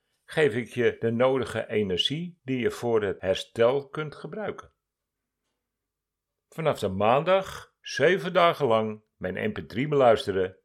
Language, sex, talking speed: Dutch, male, 125 wpm